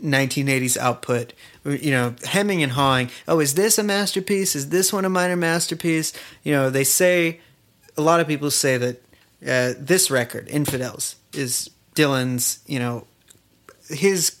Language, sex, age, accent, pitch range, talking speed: English, male, 30-49, American, 125-160 Hz, 155 wpm